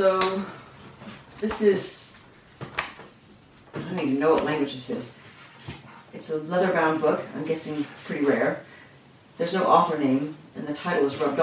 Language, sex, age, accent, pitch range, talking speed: English, female, 40-59, American, 155-190 Hz, 145 wpm